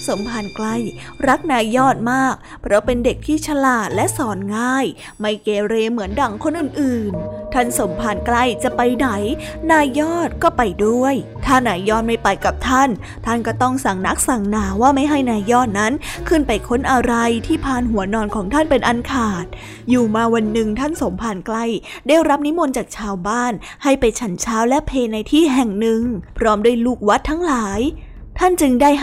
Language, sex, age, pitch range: Thai, female, 20-39, 215-265 Hz